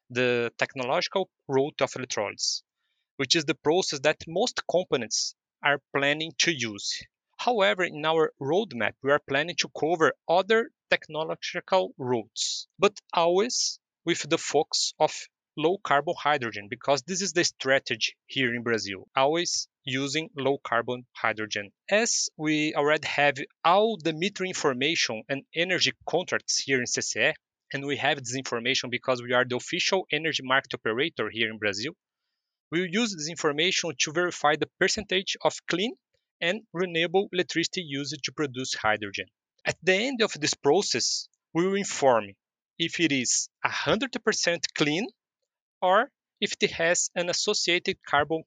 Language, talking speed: English, 145 wpm